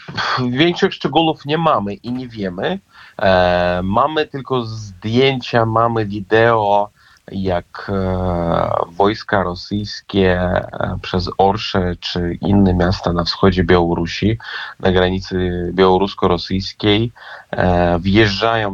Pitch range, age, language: 90-110 Hz, 30-49, Polish